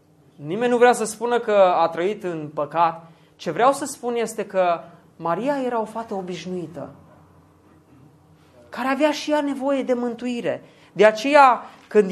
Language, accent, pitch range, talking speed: Romanian, native, 185-265 Hz, 155 wpm